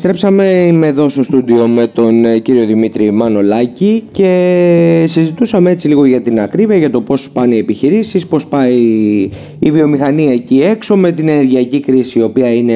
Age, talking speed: 30-49, 165 wpm